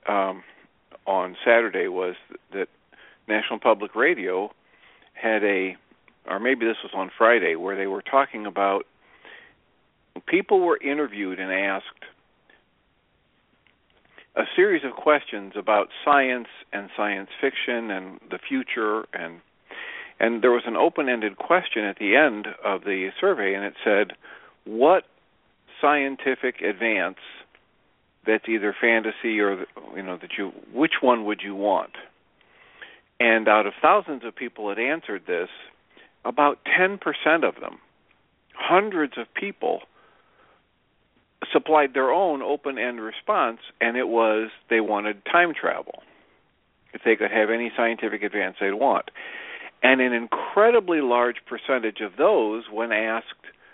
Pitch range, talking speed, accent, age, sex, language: 105-140 Hz, 130 wpm, American, 50-69, male, English